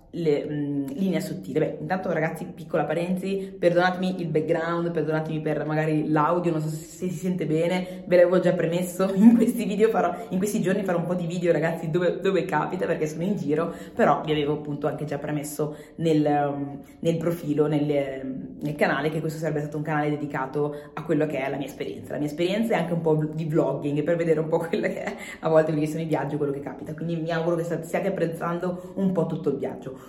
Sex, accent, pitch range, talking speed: female, native, 150-195 Hz, 225 wpm